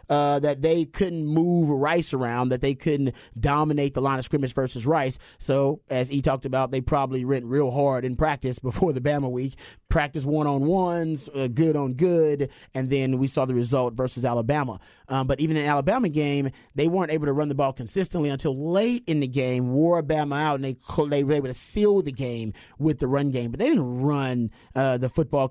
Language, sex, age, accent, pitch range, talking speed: English, male, 30-49, American, 130-155 Hz, 210 wpm